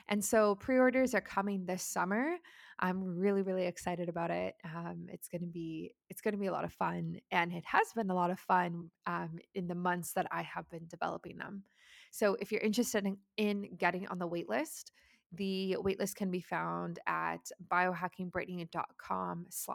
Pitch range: 170-200 Hz